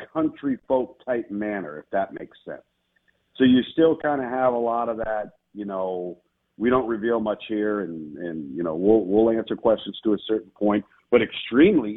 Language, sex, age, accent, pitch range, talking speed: English, male, 50-69, American, 100-135 Hz, 195 wpm